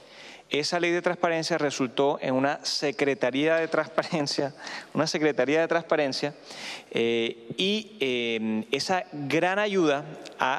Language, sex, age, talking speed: English, male, 30-49, 120 wpm